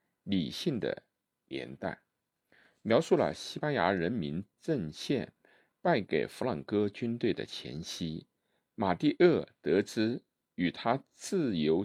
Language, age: Chinese, 50-69